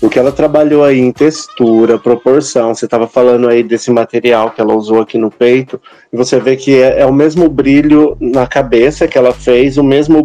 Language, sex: Portuguese, male